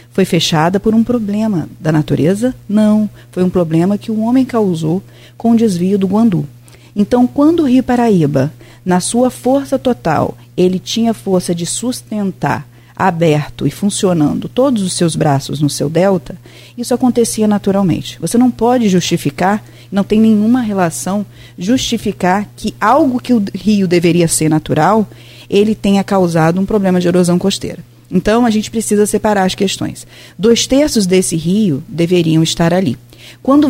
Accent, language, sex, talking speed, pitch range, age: Brazilian, Portuguese, female, 155 wpm, 160-220 Hz, 40-59